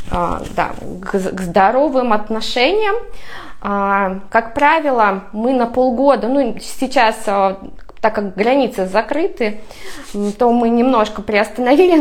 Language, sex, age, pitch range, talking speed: Russian, female, 20-39, 210-260 Hz, 95 wpm